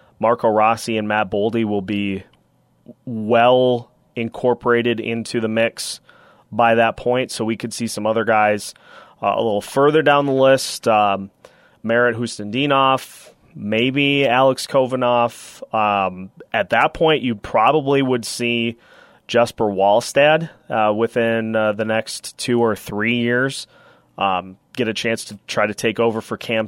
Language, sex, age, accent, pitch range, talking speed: English, male, 30-49, American, 110-130 Hz, 145 wpm